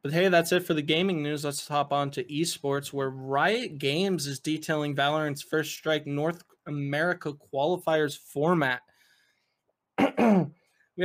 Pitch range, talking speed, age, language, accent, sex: 135-160 Hz, 140 wpm, 20-39, English, American, male